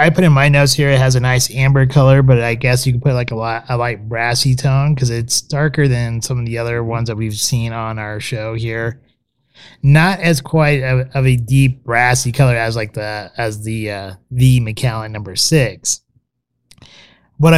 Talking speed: 210 wpm